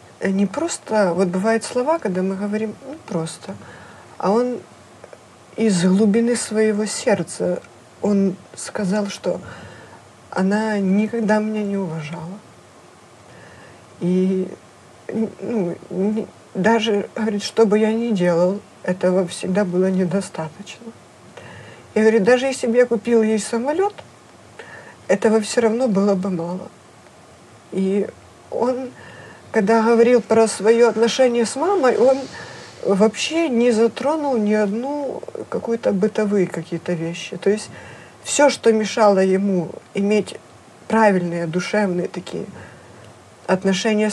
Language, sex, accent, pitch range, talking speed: Russian, female, native, 185-235 Hz, 115 wpm